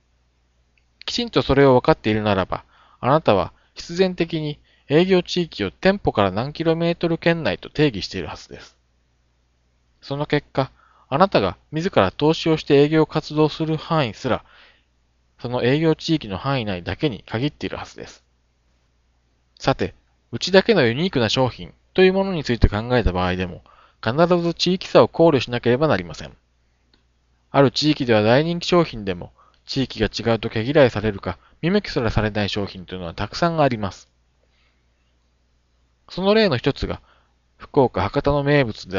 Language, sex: Japanese, male